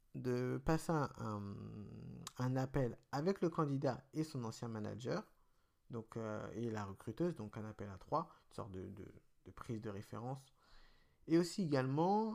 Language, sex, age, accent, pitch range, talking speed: French, male, 50-69, French, 115-145 Hz, 165 wpm